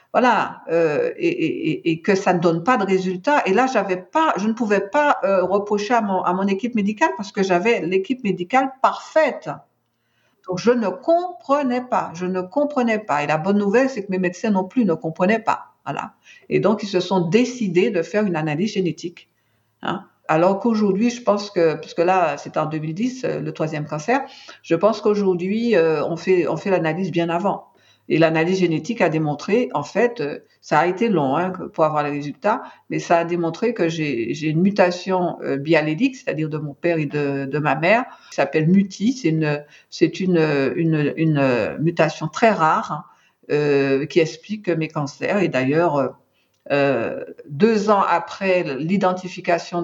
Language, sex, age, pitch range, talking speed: French, female, 50-69, 155-210 Hz, 185 wpm